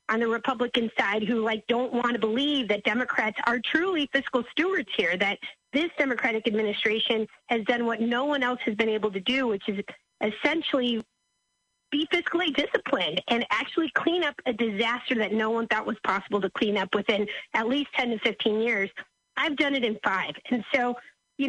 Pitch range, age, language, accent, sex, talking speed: 220-275 Hz, 40-59, English, American, female, 190 wpm